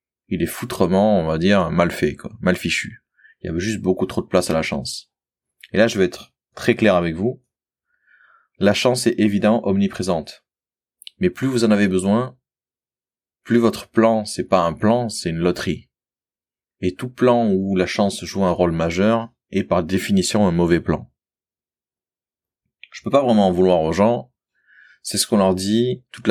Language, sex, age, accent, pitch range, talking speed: French, male, 30-49, French, 90-115 Hz, 185 wpm